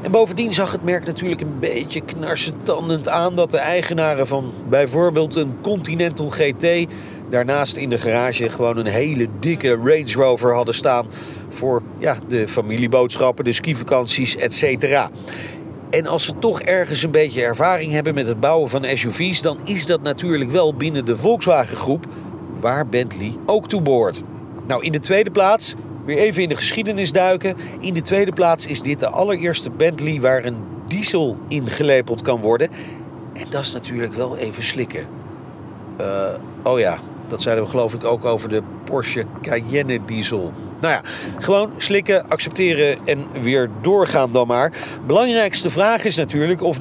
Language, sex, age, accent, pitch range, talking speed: Dutch, male, 40-59, Dutch, 125-170 Hz, 165 wpm